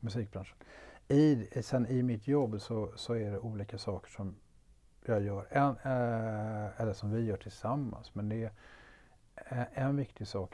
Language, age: Swedish, 50-69